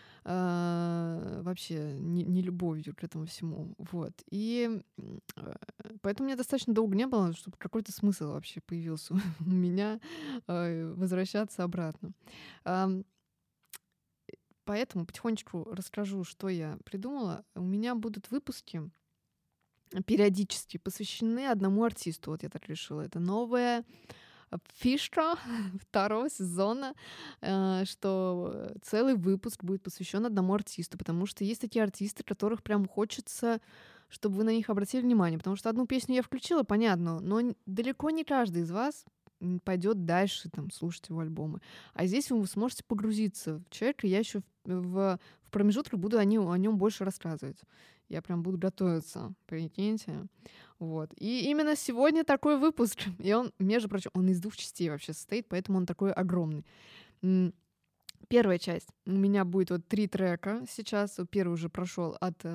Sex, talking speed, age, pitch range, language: female, 135 wpm, 20-39, 180-225 Hz, Russian